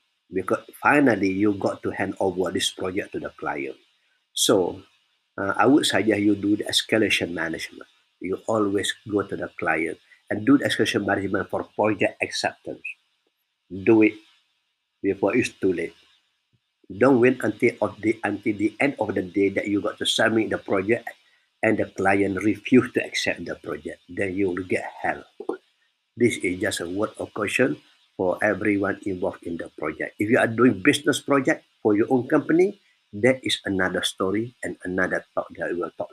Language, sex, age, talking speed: English, male, 50-69, 175 wpm